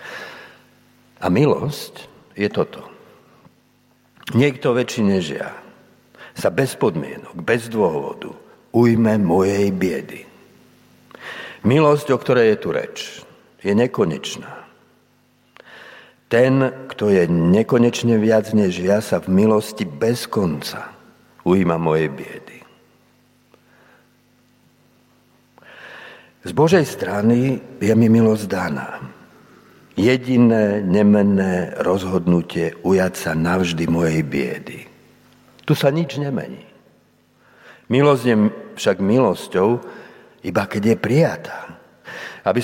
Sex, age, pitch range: male, 60-79, 95-125 Hz